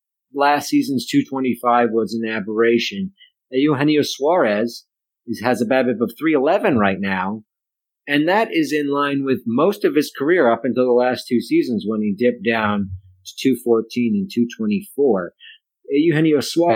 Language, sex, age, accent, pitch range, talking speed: English, male, 40-59, American, 115-160 Hz, 145 wpm